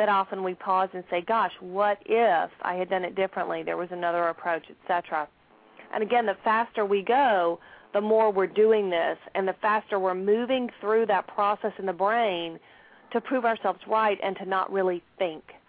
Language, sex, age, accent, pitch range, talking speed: English, female, 40-59, American, 185-225 Hz, 195 wpm